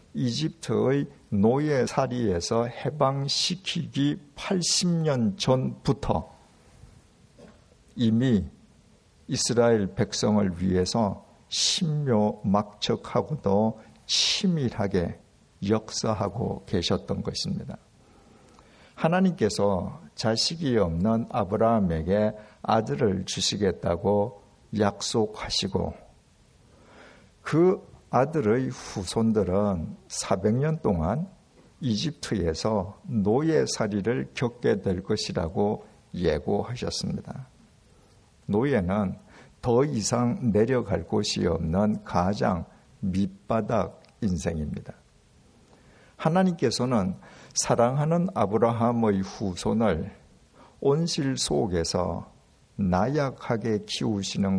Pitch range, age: 100-135 Hz, 50-69